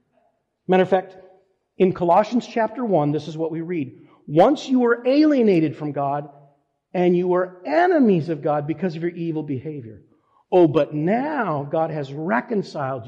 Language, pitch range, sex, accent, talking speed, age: English, 130-185 Hz, male, American, 160 wpm, 50-69